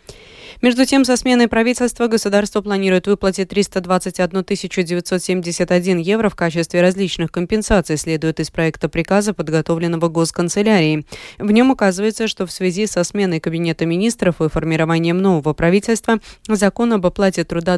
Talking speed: 130 wpm